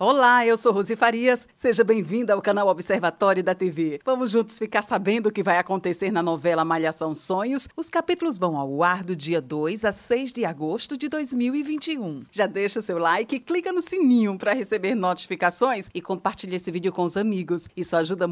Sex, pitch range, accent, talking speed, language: female, 170-220 Hz, Brazilian, 190 wpm, Portuguese